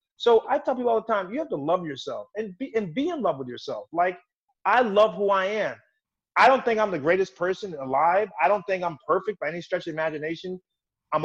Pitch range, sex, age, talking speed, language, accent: 150-215 Hz, male, 30-49, 240 wpm, English, American